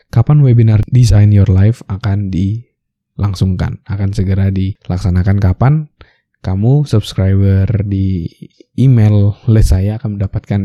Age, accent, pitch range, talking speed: 20-39, native, 100-120 Hz, 105 wpm